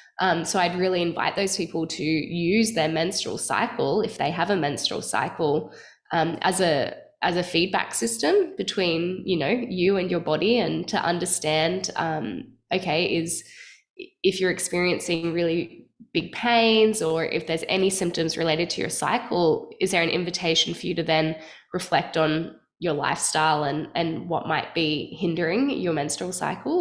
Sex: female